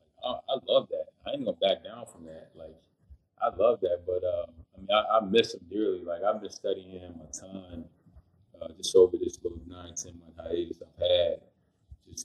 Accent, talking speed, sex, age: American, 205 wpm, male, 20-39